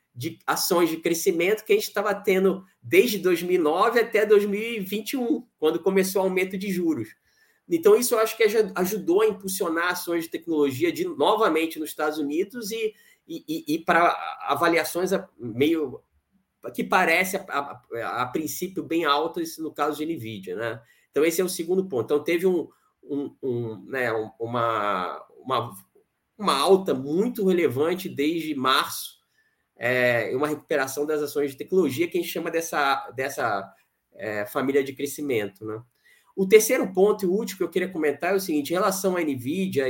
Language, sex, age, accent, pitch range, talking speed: Portuguese, male, 20-39, Brazilian, 140-200 Hz, 165 wpm